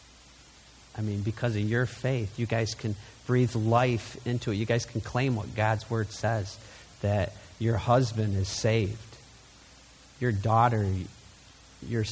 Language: English